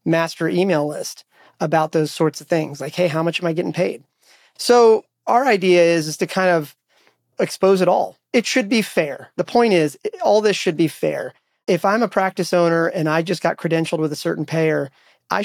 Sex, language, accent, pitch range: male, English, American, 160-185 Hz